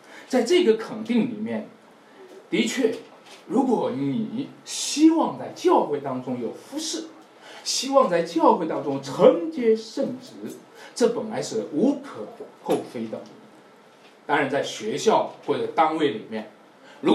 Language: Chinese